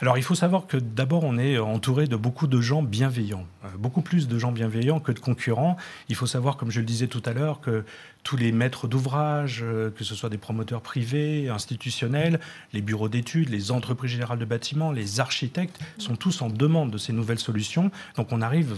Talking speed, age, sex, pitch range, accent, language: 210 wpm, 40-59, male, 115-150 Hz, French, French